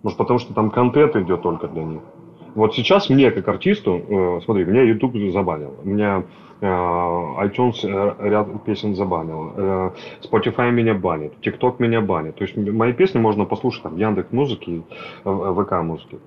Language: Russian